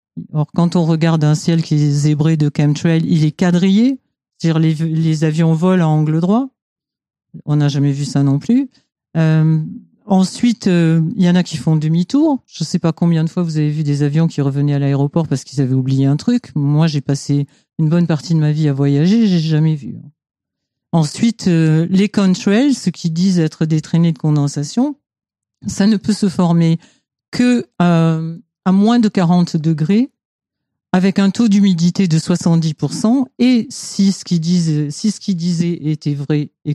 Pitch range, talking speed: 155-195 Hz, 190 wpm